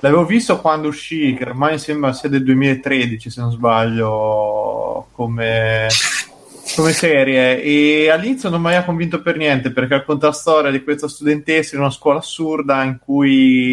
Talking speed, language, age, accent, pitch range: 160 wpm, Italian, 20-39, native, 120-140 Hz